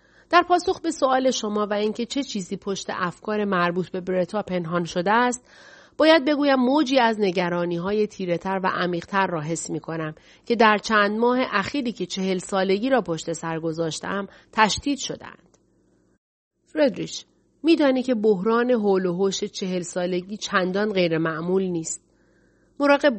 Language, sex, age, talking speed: Persian, female, 40-59, 140 wpm